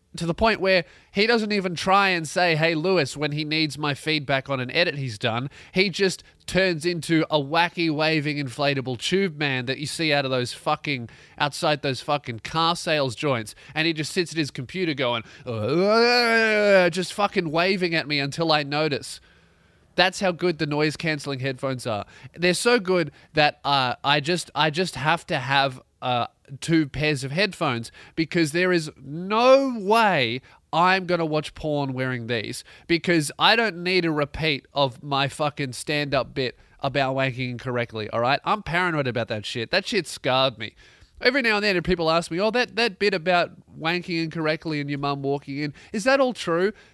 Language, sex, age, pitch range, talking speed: English, male, 20-39, 140-180 Hz, 190 wpm